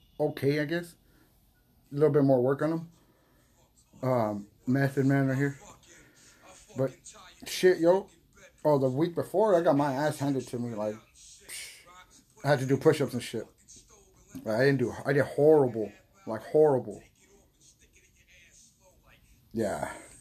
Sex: male